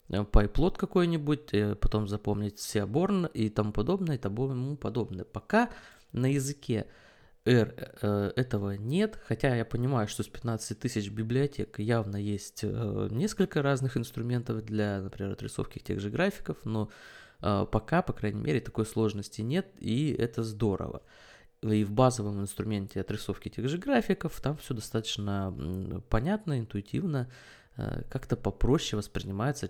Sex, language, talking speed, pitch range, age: male, Russian, 125 wpm, 105-135 Hz, 20-39